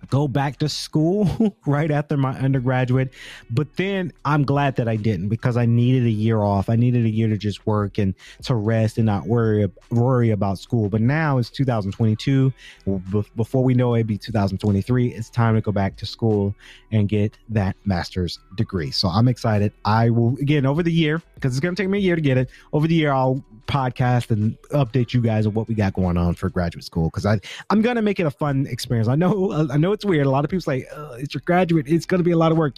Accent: American